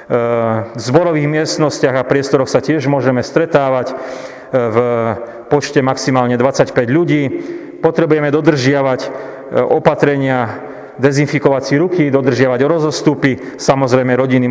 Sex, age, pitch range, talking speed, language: male, 40-59, 125-150 Hz, 95 wpm, Slovak